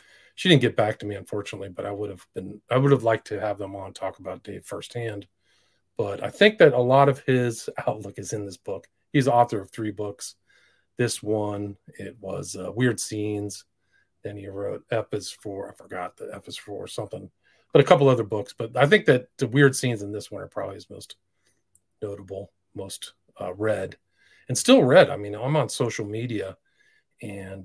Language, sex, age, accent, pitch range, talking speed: English, male, 40-59, American, 100-120 Hz, 205 wpm